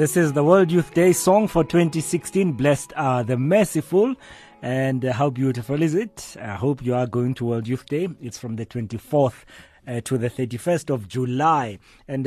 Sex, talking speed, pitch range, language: male, 190 wpm, 110-145 Hz, English